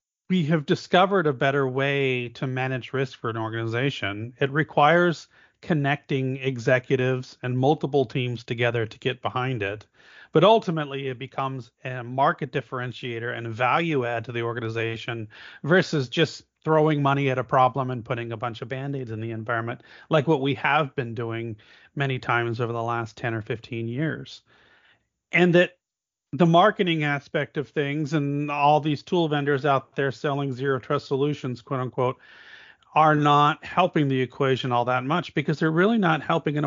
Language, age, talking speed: English, 40-59, 170 wpm